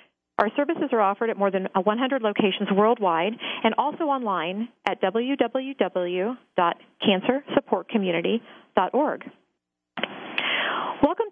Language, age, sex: English, 40-59, female